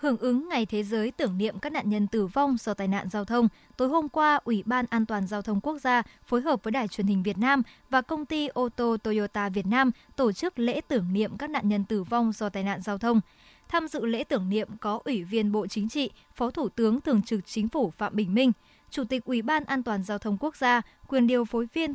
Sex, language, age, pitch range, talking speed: male, Vietnamese, 20-39, 210-265 Hz, 255 wpm